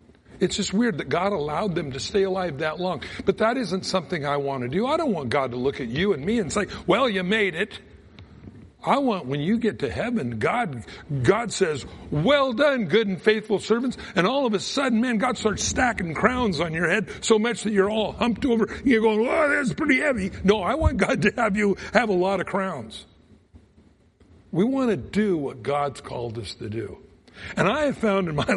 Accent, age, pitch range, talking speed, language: American, 60-79, 130-215 Hz, 225 wpm, English